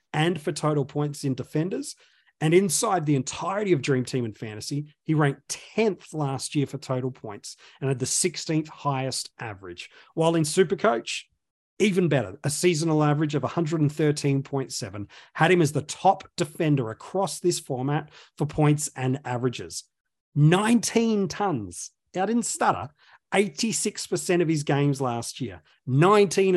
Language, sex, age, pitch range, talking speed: English, male, 40-59, 130-170 Hz, 145 wpm